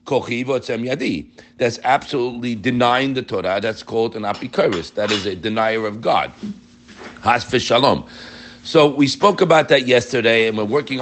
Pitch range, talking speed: 110-160 Hz, 140 wpm